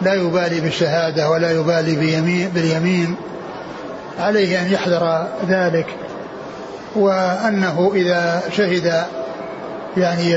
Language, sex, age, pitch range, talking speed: Arabic, male, 60-79, 175-195 Hz, 80 wpm